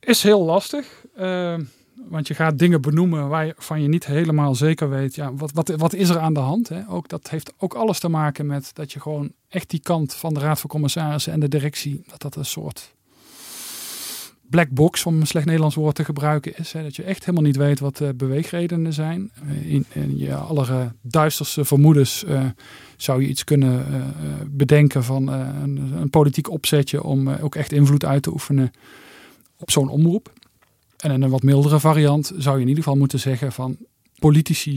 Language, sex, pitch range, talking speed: Dutch, male, 135-160 Hz, 200 wpm